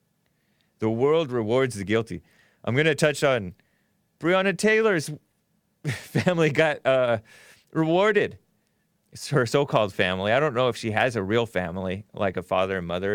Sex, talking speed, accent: male, 155 wpm, American